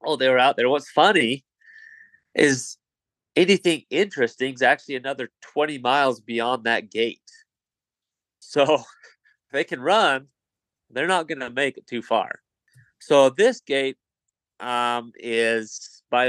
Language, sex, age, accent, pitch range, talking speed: English, male, 30-49, American, 115-145 Hz, 135 wpm